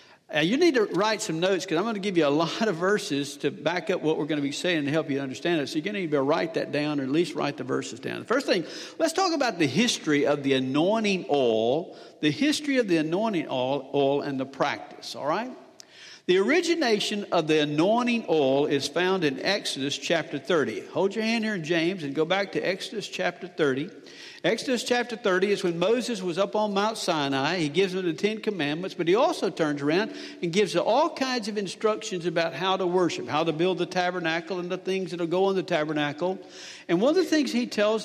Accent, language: American, English